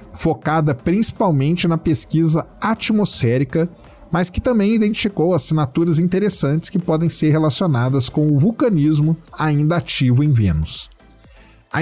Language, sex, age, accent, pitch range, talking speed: Portuguese, male, 40-59, Brazilian, 130-175 Hz, 115 wpm